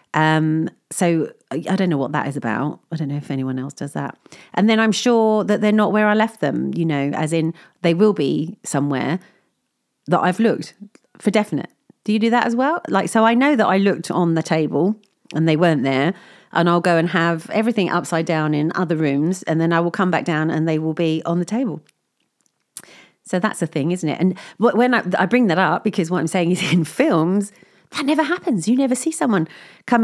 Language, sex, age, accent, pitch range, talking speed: English, female, 40-59, British, 160-220 Hz, 230 wpm